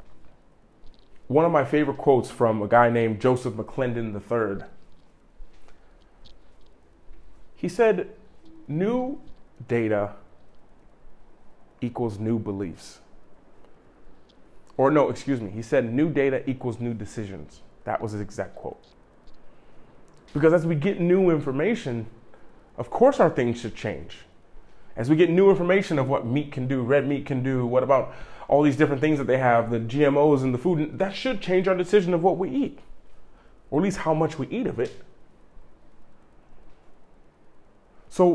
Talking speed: 150 wpm